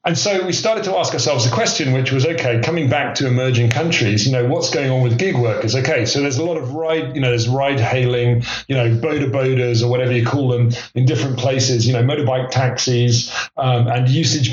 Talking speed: 230 wpm